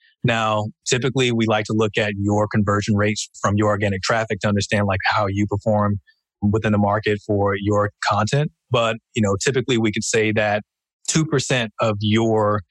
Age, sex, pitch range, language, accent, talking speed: 20-39, male, 100-110 Hz, English, American, 175 wpm